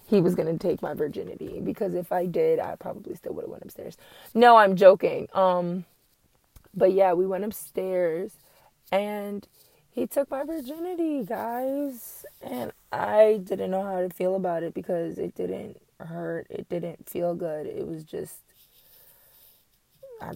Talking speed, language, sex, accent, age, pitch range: 155 wpm, English, female, American, 20-39, 175-210 Hz